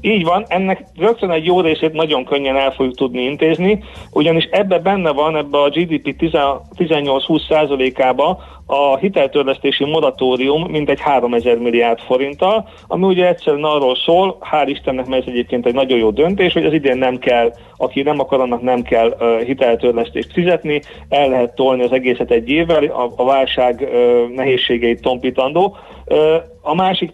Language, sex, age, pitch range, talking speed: Hungarian, male, 40-59, 130-165 Hz, 155 wpm